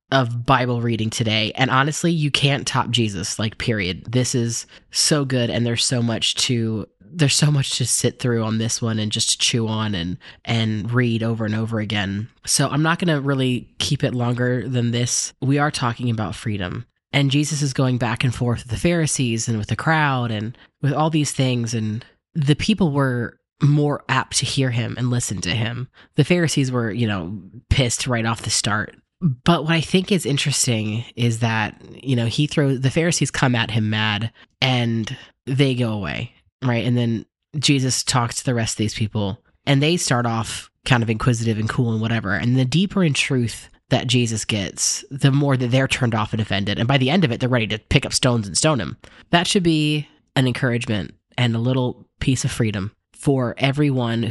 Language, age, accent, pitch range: English, 20-39, American, 110-140 Hz